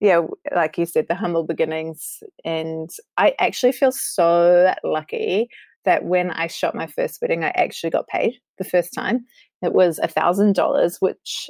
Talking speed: 170 wpm